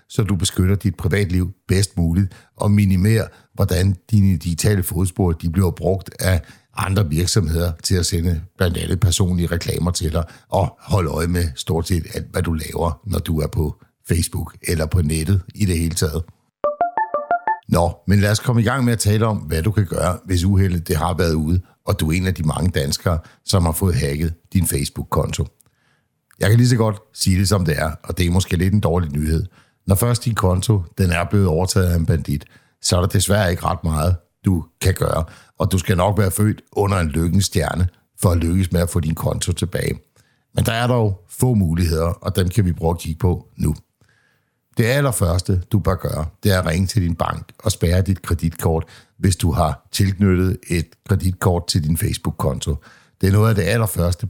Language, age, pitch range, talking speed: Danish, 60-79, 85-105 Hz, 210 wpm